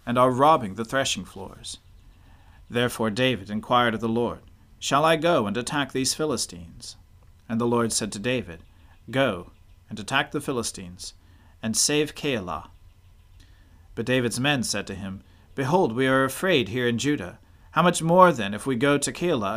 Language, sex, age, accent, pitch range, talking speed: English, male, 40-59, American, 95-135 Hz, 170 wpm